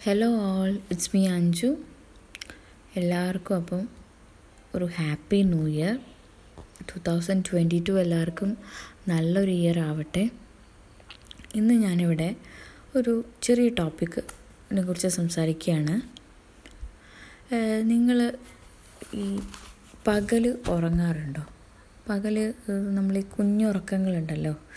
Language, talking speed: Malayalam, 80 wpm